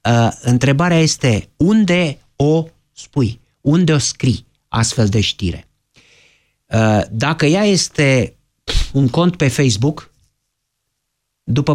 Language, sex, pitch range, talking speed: Romanian, male, 125-185 Hz, 105 wpm